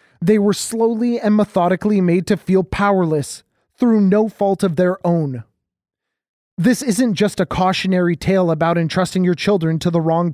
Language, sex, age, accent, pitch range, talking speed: English, male, 20-39, American, 170-200 Hz, 165 wpm